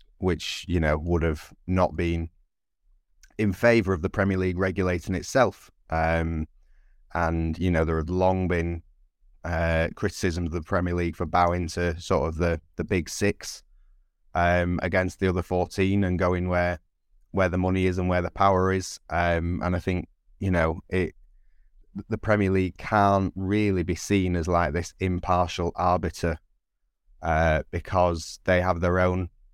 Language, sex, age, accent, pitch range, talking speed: English, male, 20-39, British, 85-95 Hz, 165 wpm